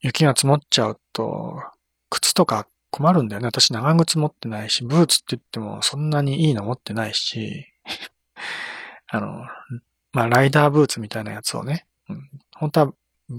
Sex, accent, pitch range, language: male, native, 120-155 Hz, Japanese